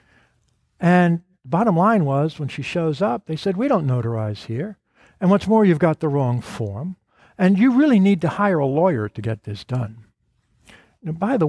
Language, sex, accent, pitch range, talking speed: English, male, American, 120-165 Hz, 200 wpm